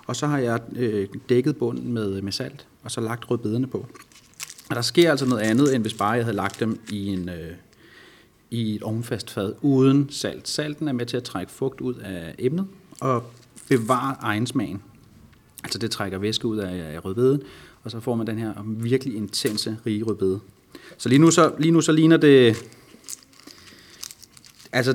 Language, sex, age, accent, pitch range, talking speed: Danish, male, 30-49, native, 110-140 Hz, 180 wpm